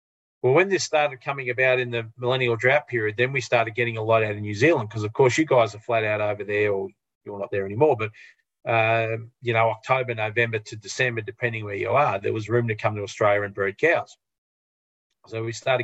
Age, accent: 40-59, Australian